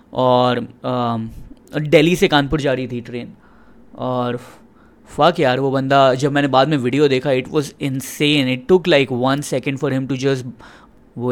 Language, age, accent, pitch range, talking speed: Hindi, 20-39, native, 125-145 Hz, 175 wpm